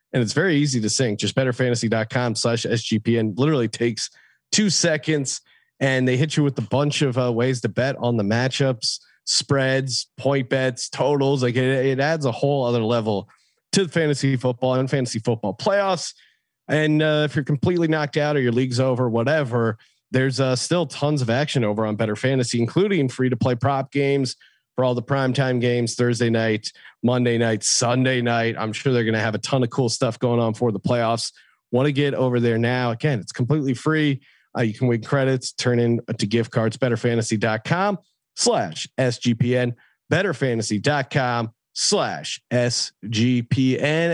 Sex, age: male, 40-59